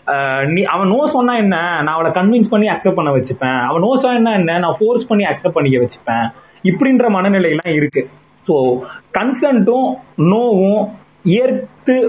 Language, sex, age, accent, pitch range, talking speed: Tamil, male, 30-49, native, 165-230 Hz, 135 wpm